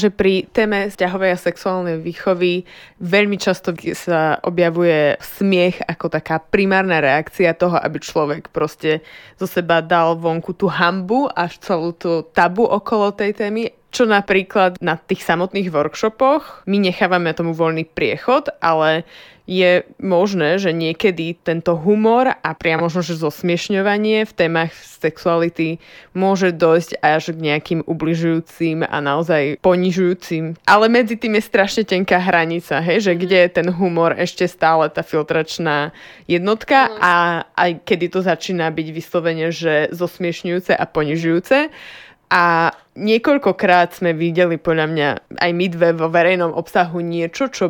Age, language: 20-39, Slovak